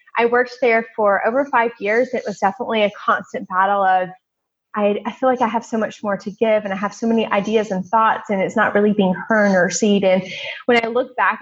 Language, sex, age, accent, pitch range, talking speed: English, female, 20-39, American, 195-235 Hz, 240 wpm